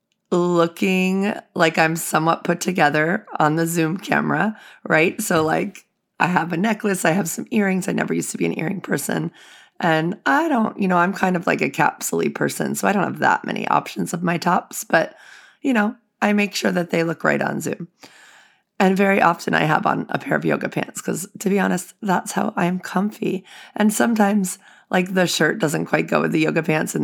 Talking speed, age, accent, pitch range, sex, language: 210 wpm, 30-49, American, 170-205 Hz, female, English